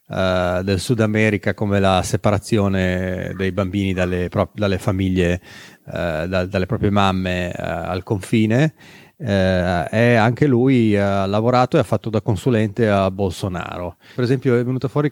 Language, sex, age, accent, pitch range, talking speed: Italian, male, 30-49, native, 100-125 Hz, 155 wpm